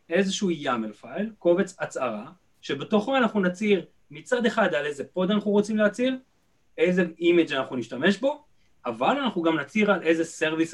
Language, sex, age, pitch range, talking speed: Hebrew, male, 30-49, 140-210 Hz, 155 wpm